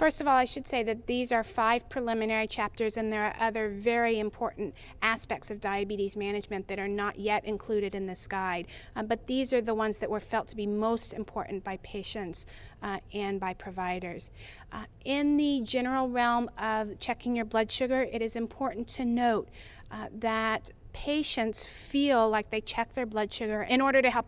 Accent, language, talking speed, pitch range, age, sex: American, English, 195 wpm, 200-245 Hz, 40-59, female